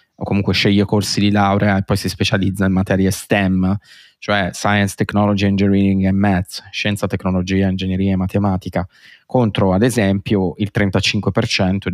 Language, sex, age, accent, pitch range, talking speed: Italian, male, 20-39, native, 95-105 Hz, 145 wpm